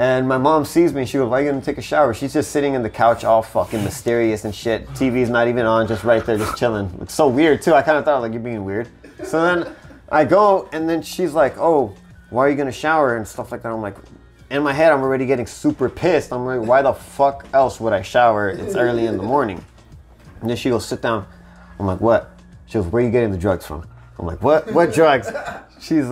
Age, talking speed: 20-39, 255 wpm